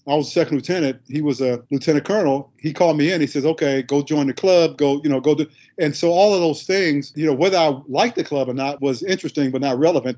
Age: 50-69